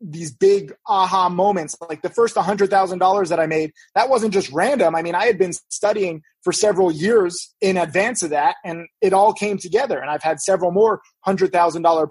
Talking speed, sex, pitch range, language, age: 195 wpm, male, 170-215 Hz, English, 30-49